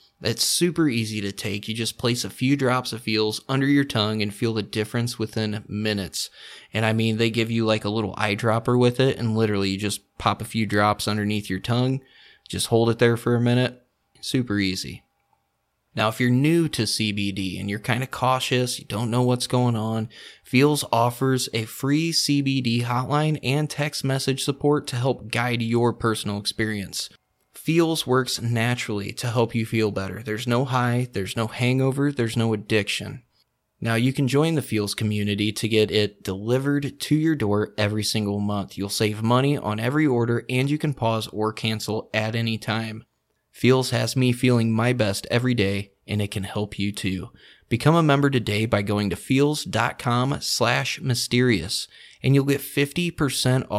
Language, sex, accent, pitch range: English, male, American, 105-130 Hz